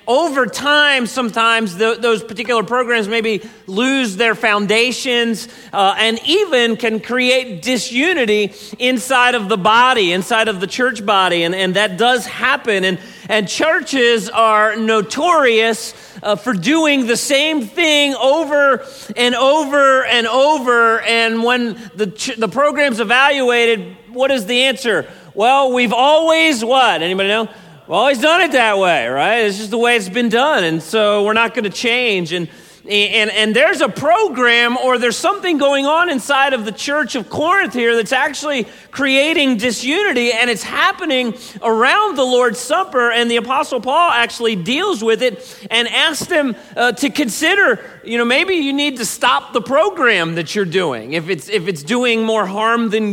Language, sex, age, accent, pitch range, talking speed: English, male, 40-59, American, 215-270 Hz, 165 wpm